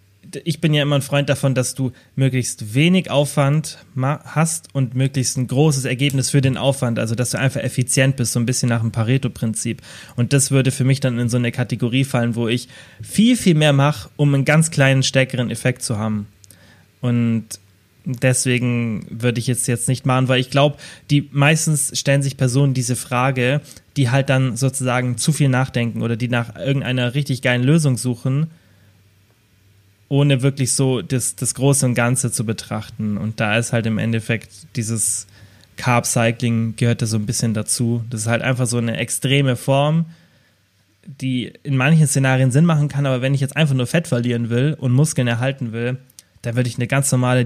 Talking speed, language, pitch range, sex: 190 wpm, German, 115-135 Hz, male